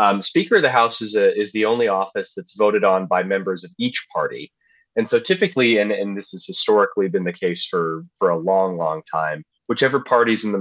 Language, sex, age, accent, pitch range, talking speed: English, male, 30-49, American, 95-120 Hz, 225 wpm